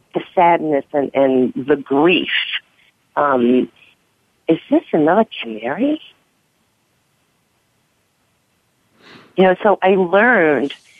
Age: 50-69